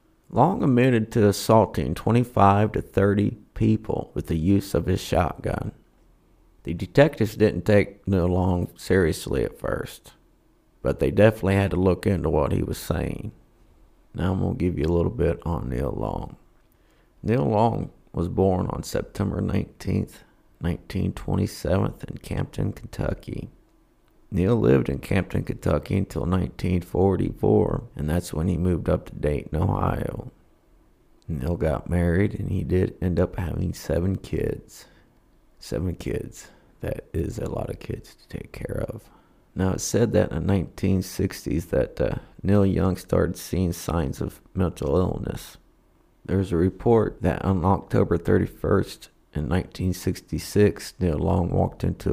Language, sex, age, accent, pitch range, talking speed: English, male, 50-69, American, 85-100 Hz, 145 wpm